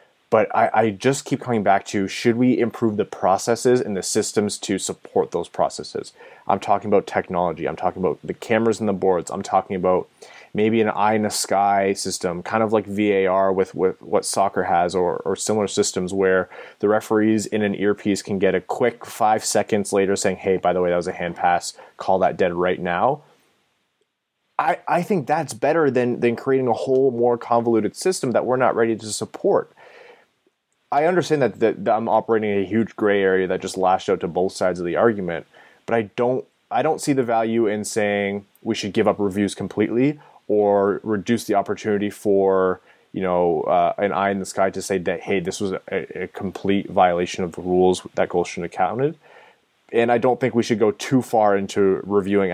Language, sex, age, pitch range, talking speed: English, male, 20-39, 95-120 Hz, 205 wpm